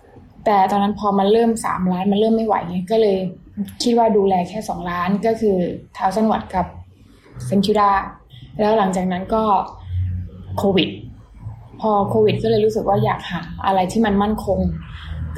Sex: female